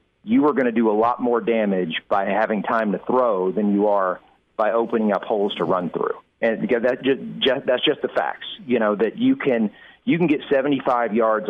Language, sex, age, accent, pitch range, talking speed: English, male, 40-59, American, 110-135 Hz, 205 wpm